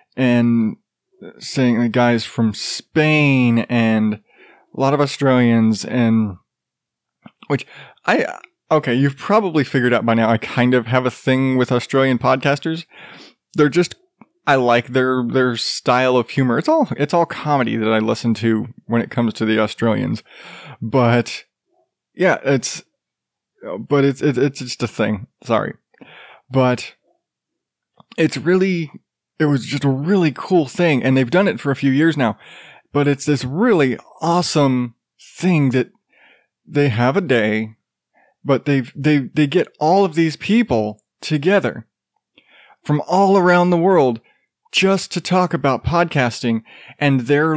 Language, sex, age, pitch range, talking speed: English, male, 20-39, 120-155 Hz, 150 wpm